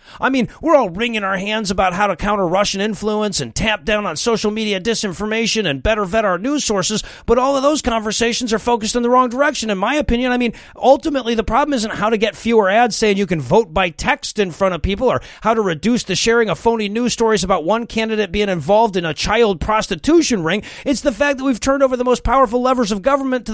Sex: male